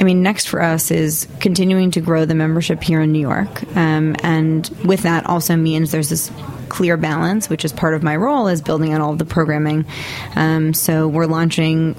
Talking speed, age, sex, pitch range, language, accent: 210 wpm, 20-39, female, 155-175 Hz, English, American